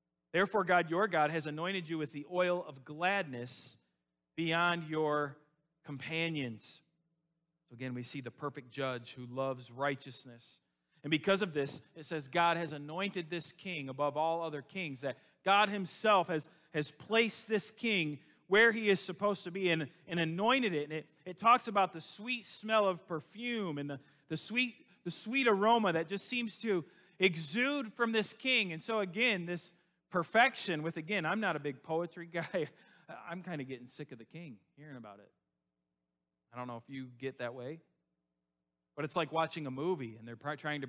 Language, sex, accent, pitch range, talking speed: English, male, American, 125-180 Hz, 185 wpm